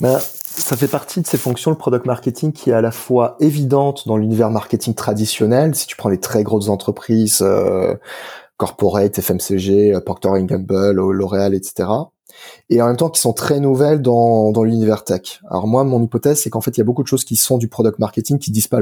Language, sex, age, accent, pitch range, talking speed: French, male, 20-39, French, 105-135 Hz, 215 wpm